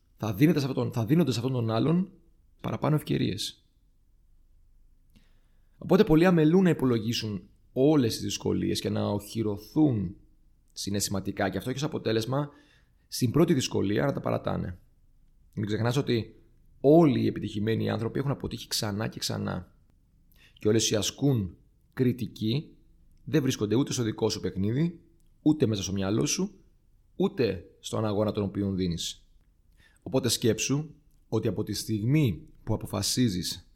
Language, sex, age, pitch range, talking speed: Greek, male, 30-49, 100-135 Hz, 135 wpm